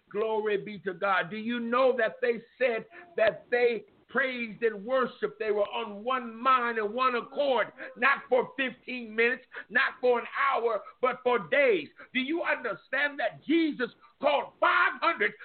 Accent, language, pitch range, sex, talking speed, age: American, English, 215-265 Hz, male, 160 wpm, 50-69